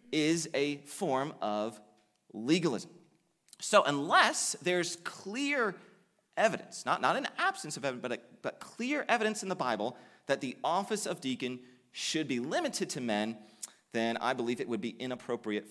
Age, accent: 30-49, American